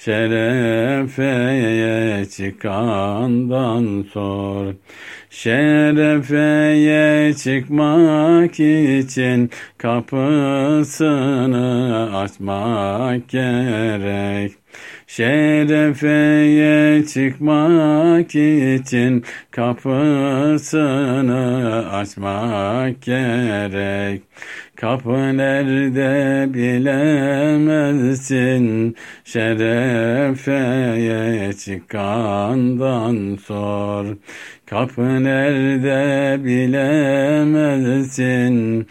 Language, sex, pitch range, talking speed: Turkish, male, 115-145 Hz, 35 wpm